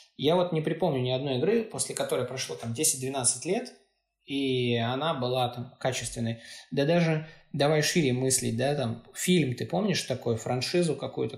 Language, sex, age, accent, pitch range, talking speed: Russian, male, 20-39, native, 125-160 Hz, 165 wpm